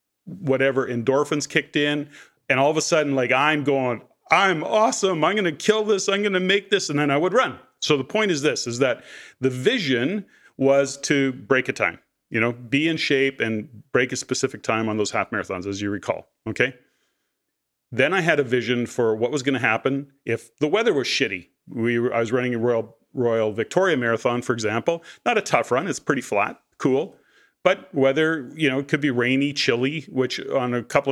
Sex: male